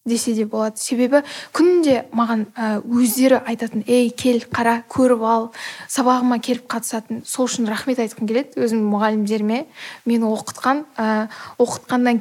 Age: 10-29